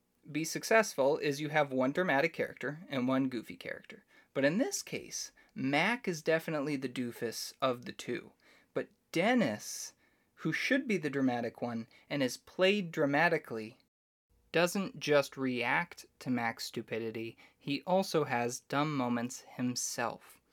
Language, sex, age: English, male, 20-39